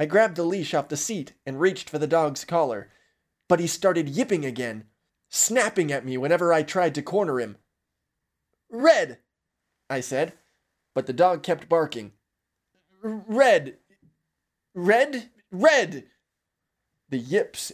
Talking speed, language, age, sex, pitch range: 135 wpm, English, 20-39, male, 140-225 Hz